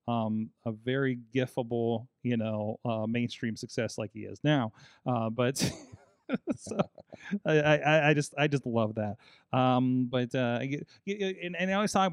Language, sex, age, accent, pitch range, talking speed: English, male, 30-49, American, 115-145 Hz, 160 wpm